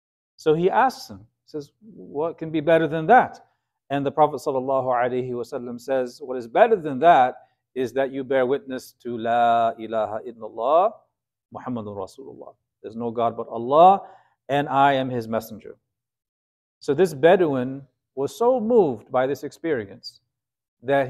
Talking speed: 150 wpm